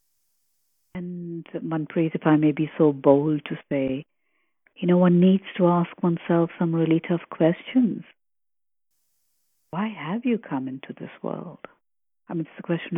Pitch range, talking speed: 165-215 Hz, 150 wpm